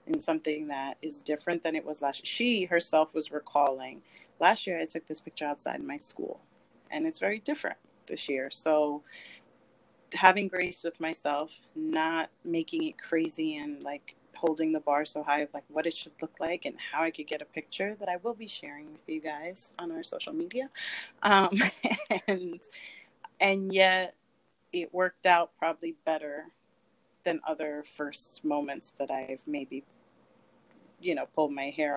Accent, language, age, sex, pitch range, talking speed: American, English, 30-49, female, 150-185 Hz, 175 wpm